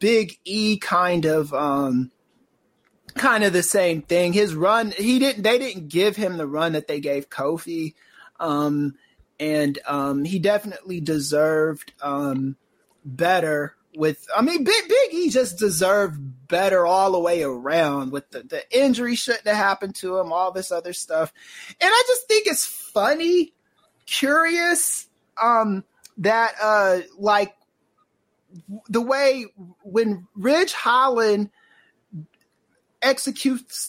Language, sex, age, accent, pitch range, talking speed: English, male, 20-39, American, 165-225 Hz, 135 wpm